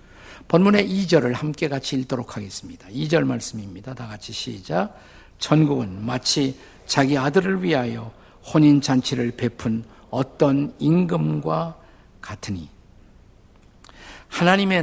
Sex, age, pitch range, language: male, 50-69, 100-155 Hz, Korean